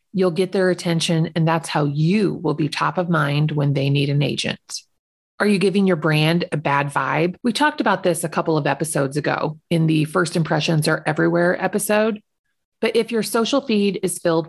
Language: English